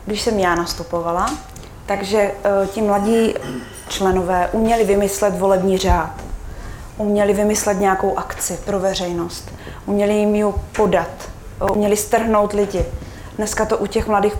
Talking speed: 130 wpm